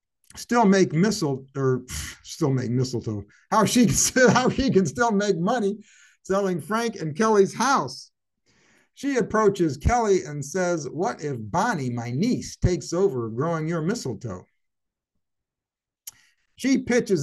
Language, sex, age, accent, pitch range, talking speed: English, male, 60-79, American, 125-195 Hz, 130 wpm